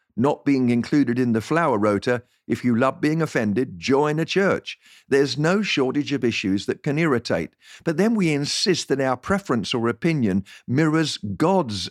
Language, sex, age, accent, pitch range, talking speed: English, male, 50-69, British, 115-160 Hz, 170 wpm